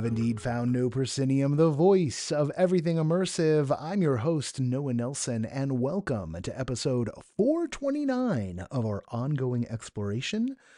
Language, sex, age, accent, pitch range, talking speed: English, male, 30-49, American, 120-195 Hz, 130 wpm